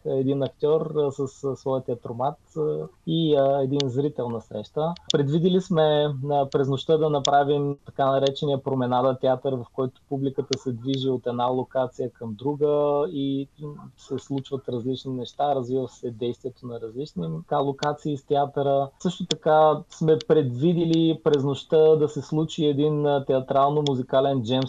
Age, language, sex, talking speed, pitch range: 20-39, Bulgarian, male, 150 wpm, 130-150 Hz